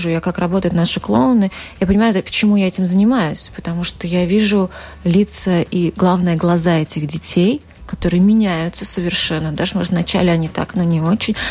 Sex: female